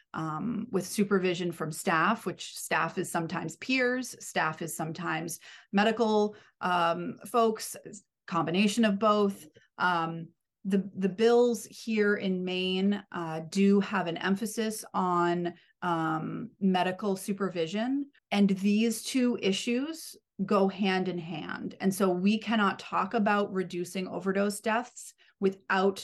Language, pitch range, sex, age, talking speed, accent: English, 170-210 Hz, female, 30-49, 120 wpm, American